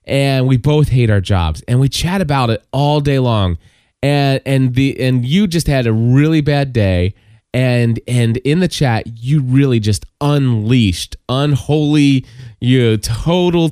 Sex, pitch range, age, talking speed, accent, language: male, 115-145 Hz, 20-39, 165 wpm, American, English